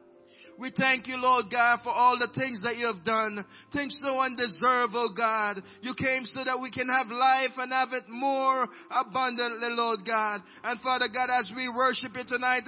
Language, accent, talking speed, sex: English, Jamaican, 195 wpm, male